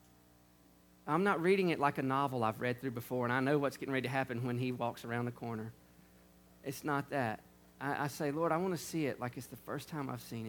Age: 40-59